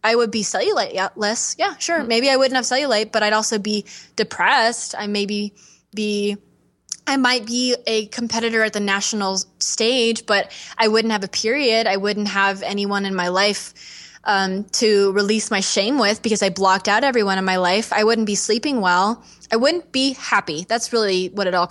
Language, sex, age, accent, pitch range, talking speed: English, female, 20-39, American, 195-240 Hz, 195 wpm